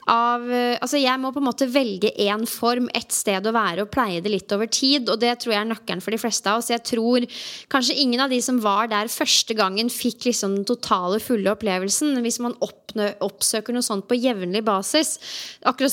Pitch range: 210-255 Hz